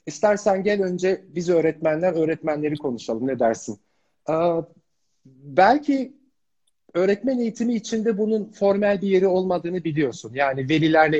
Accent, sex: native, male